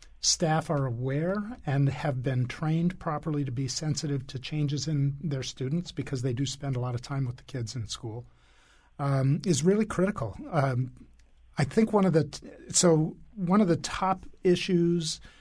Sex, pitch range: male, 135-165 Hz